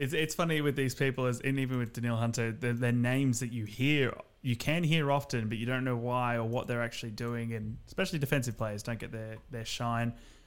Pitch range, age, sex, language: 110-130 Hz, 20-39, male, English